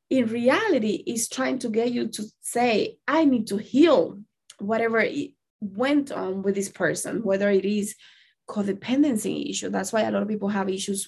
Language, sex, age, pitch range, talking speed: English, female, 20-39, 215-265 Hz, 180 wpm